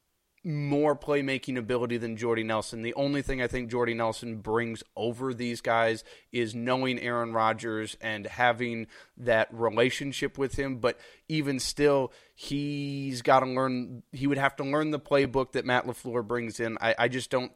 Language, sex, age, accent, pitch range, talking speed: English, male, 20-39, American, 115-150 Hz, 170 wpm